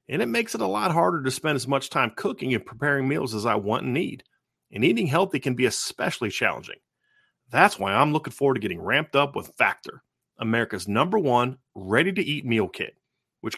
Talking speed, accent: 205 wpm, American